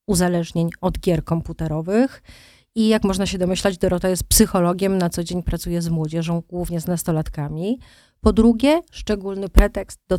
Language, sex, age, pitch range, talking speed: Polish, female, 30-49, 170-195 Hz, 155 wpm